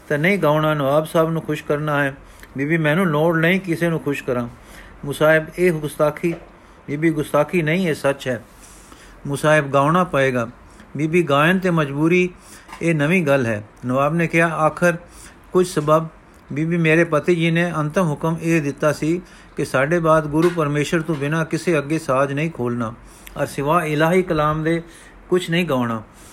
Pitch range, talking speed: 135-165 Hz, 170 wpm